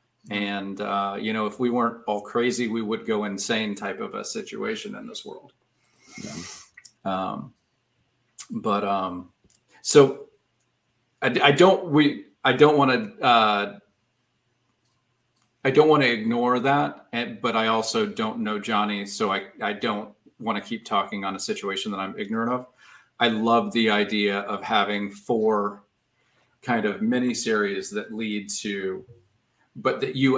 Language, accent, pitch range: English, American, 105-125 Hz